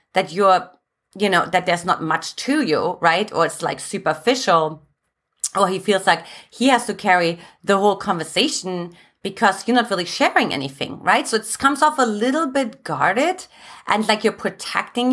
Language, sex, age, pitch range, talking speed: English, female, 30-49, 180-235 Hz, 180 wpm